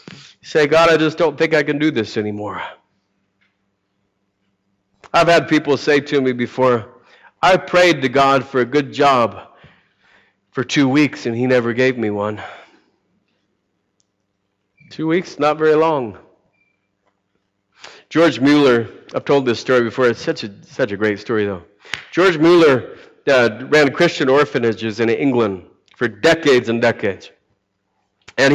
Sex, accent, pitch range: male, American, 120-165 Hz